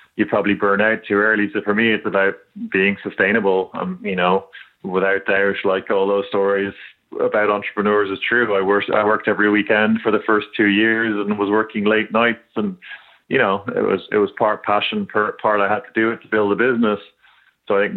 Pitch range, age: 100-110 Hz, 20-39